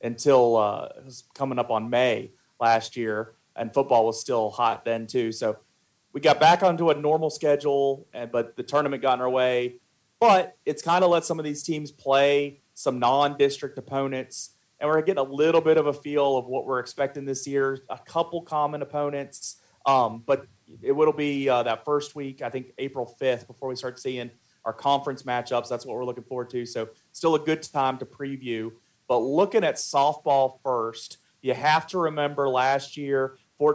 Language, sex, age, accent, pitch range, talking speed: English, male, 30-49, American, 125-145 Hz, 190 wpm